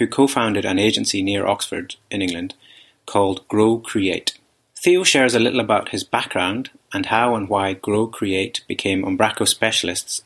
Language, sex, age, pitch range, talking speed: English, male, 30-49, 100-135 Hz, 145 wpm